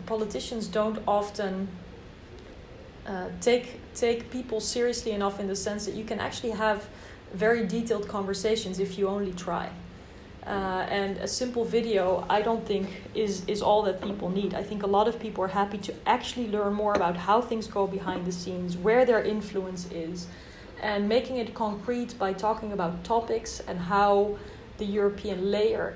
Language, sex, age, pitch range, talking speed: English, female, 30-49, 190-220 Hz, 170 wpm